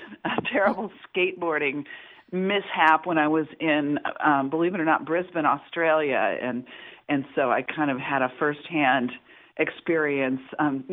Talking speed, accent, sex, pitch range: 145 wpm, American, female, 145-170 Hz